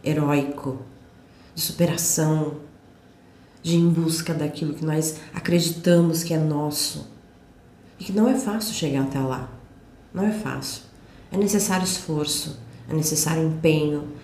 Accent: Brazilian